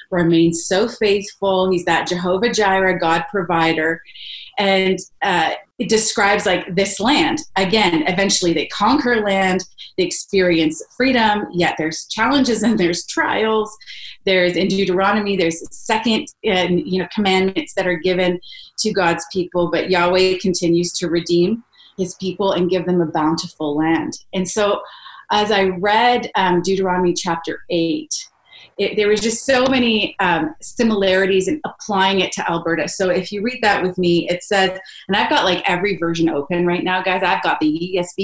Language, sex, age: English, female, 30-49